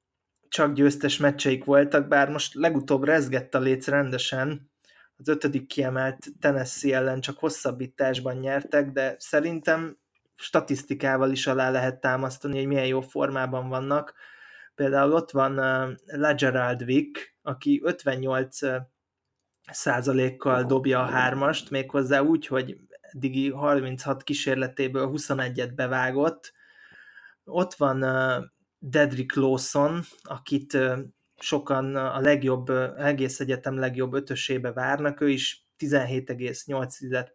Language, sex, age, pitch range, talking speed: Hungarian, male, 20-39, 130-145 Hz, 110 wpm